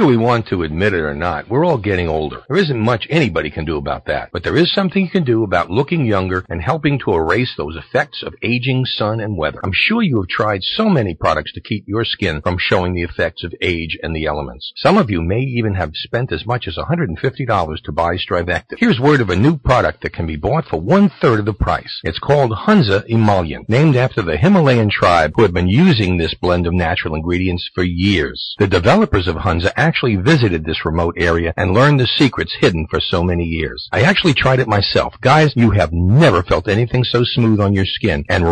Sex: male